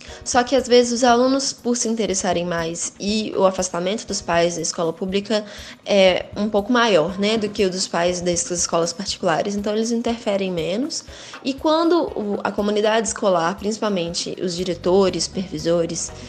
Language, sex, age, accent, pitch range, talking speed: Portuguese, female, 10-29, Brazilian, 185-230 Hz, 160 wpm